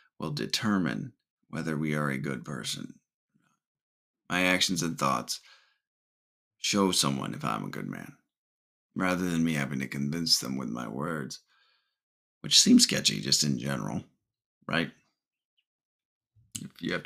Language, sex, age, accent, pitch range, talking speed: English, male, 30-49, American, 75-105 Hz, 135 wpm